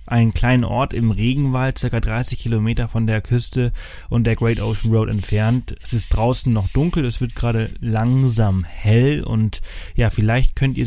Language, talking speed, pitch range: German, 175 wpm, 100-125 Hz